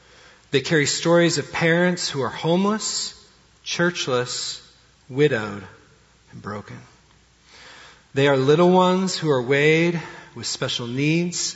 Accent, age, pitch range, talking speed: American, 40-59, 125-170 Hz, 115 wpm